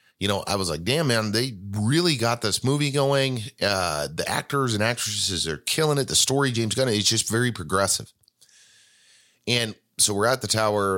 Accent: American